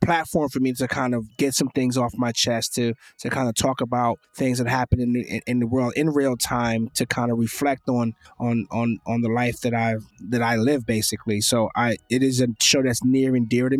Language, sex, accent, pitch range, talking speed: English, male, American, 110-125 Hz, 245 wpm